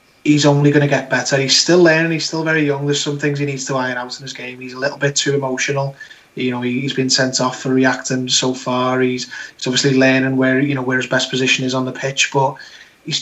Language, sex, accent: English, male, British